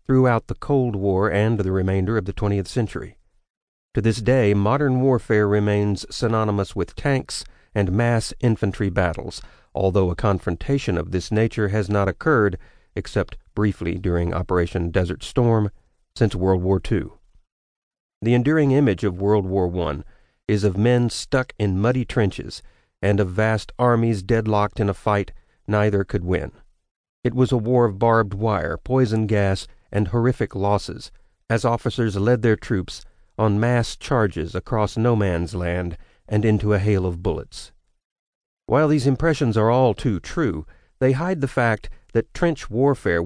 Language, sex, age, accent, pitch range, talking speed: English, male, 40-59, American, 95-120 Hz, 155 wpm